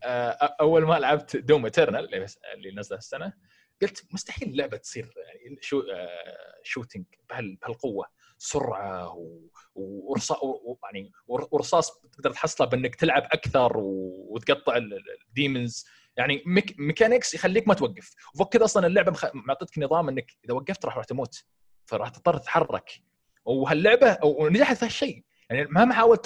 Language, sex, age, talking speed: Arabic, male, 20-39, 120 wpm